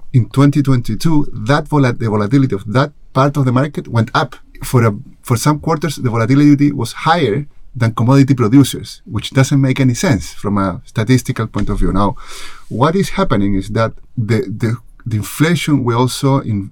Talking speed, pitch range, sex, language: 180 wpm, 110-140 Hz, male, Swedish